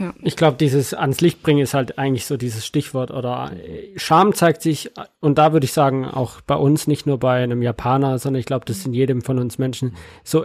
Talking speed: 225 wpm